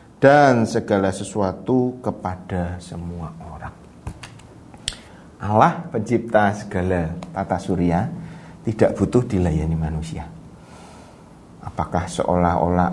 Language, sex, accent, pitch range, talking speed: Indonesian, male, native, 90-130 Hz, 80 wpm